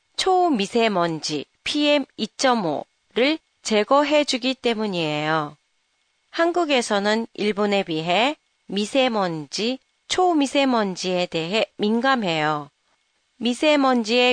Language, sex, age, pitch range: Japanese, female, 40-59, 190-270 Hz